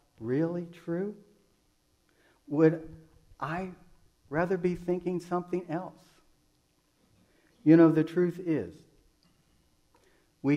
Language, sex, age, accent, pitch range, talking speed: English, male, 60-79, American, 105-150 Hz, 85 wpm